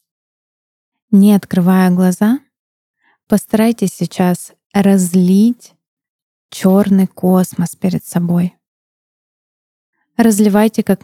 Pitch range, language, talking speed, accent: 180-205 Hz, Russian, 65 wpm, native